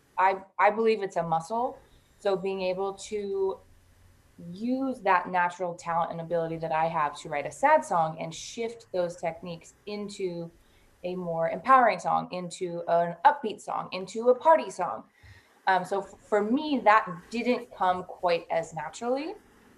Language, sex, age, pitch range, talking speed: English, female, 20-39, 170-210 Hz, 160 wpm